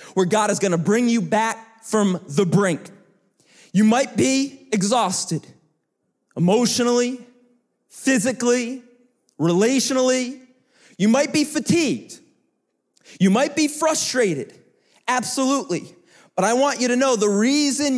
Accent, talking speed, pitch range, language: American, 115 wpm, 210-260 Hz, English